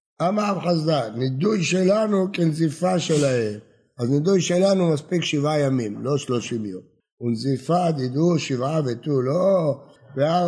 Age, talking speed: 60-79, 120 wpm